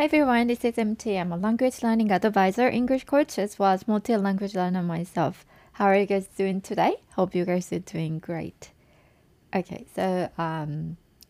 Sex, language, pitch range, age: female, Japanese, 170-205 Hz, 20-39